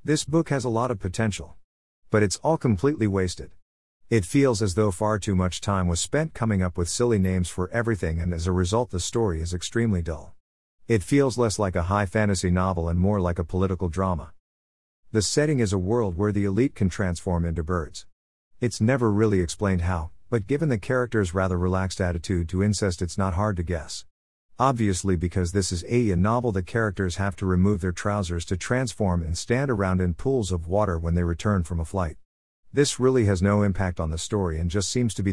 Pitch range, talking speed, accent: 85-110 Hz, 210 wpm, American